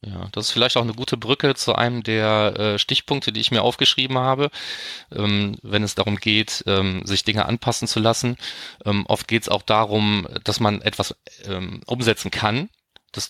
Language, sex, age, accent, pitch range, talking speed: German, male, 30-49, German, 100-115 Hz, 190 wpm